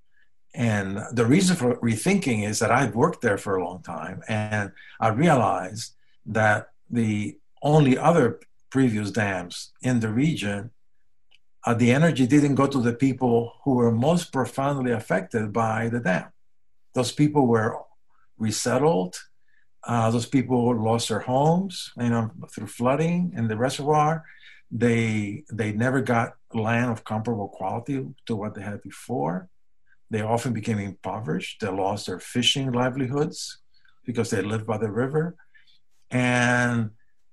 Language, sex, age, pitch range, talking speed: English, male, 50-69, 110-135 Hz, 140 wpm